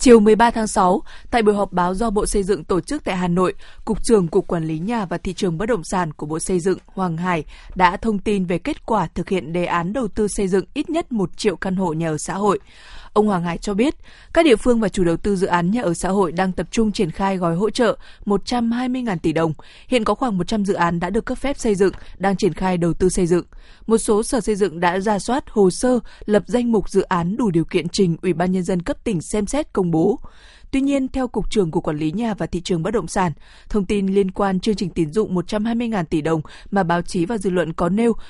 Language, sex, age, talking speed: Vietnamese, female, 20-39, 265 wpm